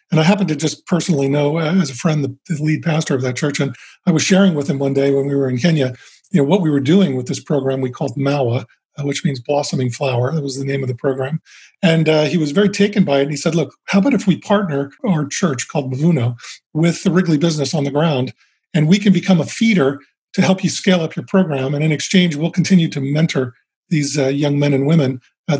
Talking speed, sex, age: 260 wpm, male, 40-59